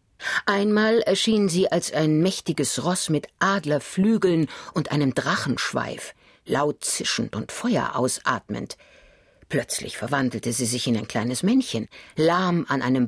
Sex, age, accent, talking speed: female, 50-69, German, 130 wpm